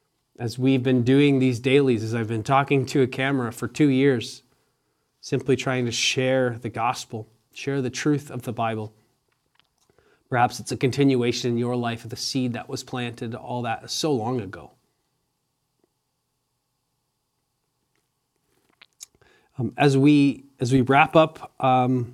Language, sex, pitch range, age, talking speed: English, male, 125-145 Hz, 30-49, 145 wpm